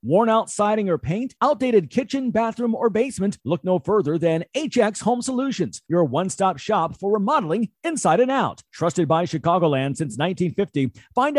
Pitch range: 155-220 Hz